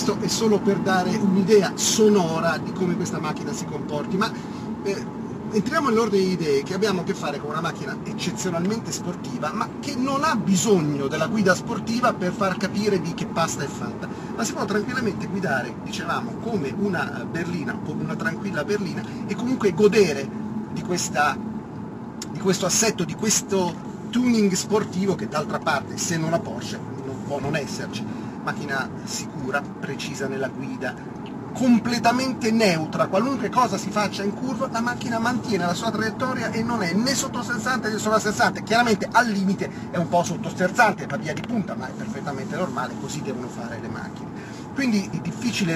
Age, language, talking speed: 40-59, Italian, 170 wpm